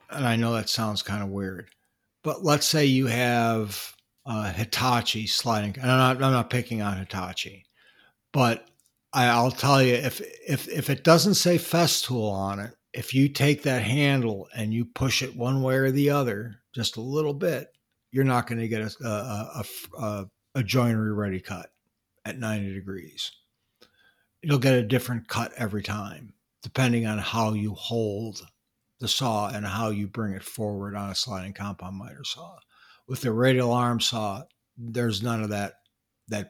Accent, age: American, 60-79